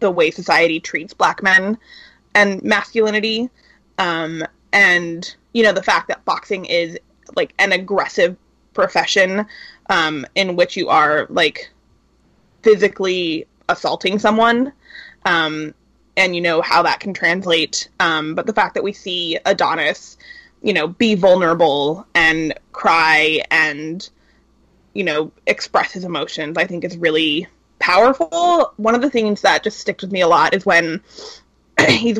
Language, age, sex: English, 20-39, female